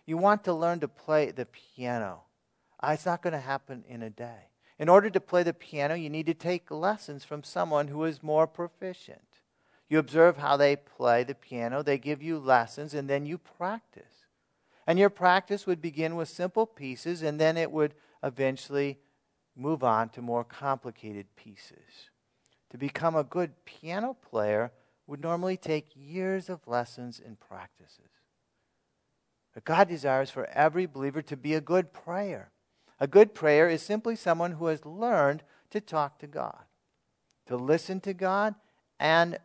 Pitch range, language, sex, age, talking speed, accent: 120-175 Hz, English, male, 50-69, 165 wpm, American